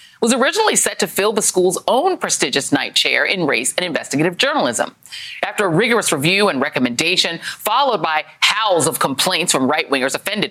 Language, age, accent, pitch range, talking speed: English, 40-59, American, 160-215 Hz, 170 wpm